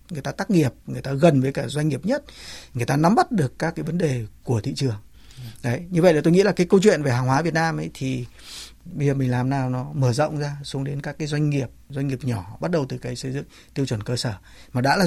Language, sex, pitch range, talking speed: Vietnamese, male, 125-165 Hz, 285 wpm